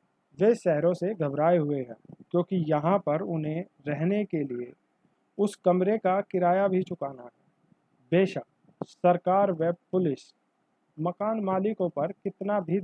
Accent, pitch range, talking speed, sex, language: native, 155-195 Hz, 135 wpm, male, Hindi